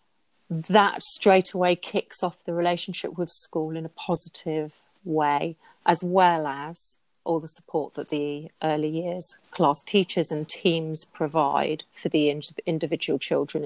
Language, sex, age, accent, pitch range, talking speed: English, female, 40-59, British, 155-180 Hz, 140 wpm